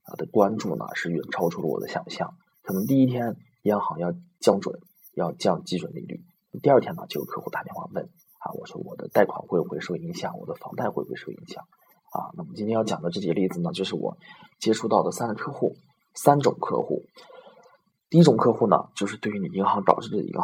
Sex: male